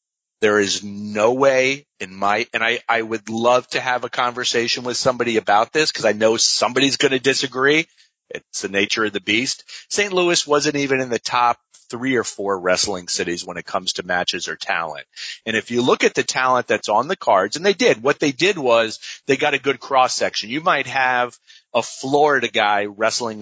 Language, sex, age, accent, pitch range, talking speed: English, male, 30-49, American, 110-135 Hz, 210 wpm